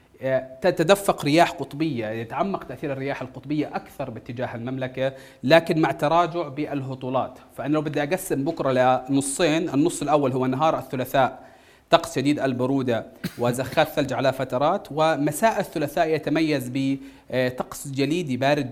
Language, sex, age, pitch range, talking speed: Arabic, male, 30-49, 130-160 Hz, 120 wpm